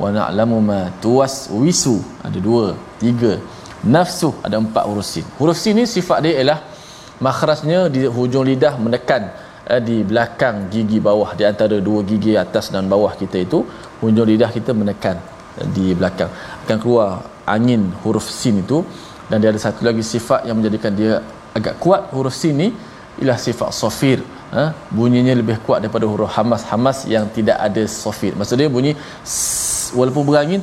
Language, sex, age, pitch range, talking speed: Malayalam, male, 20-39, 105-135 Hz, 165 wpm